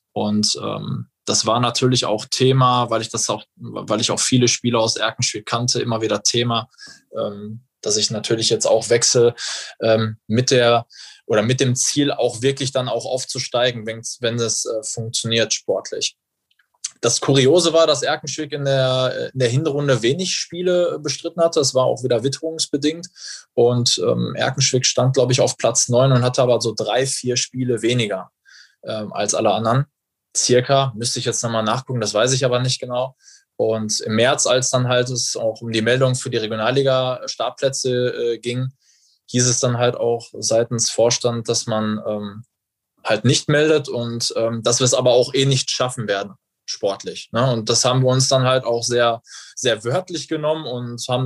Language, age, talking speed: German, 20-39, 180 wpm